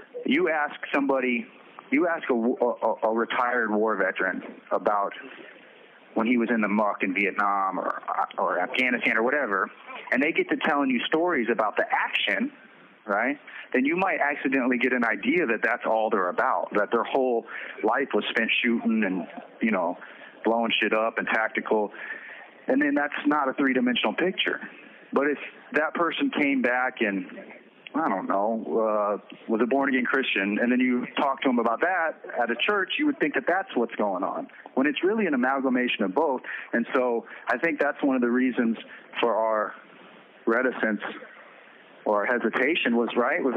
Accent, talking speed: American, 180 wpm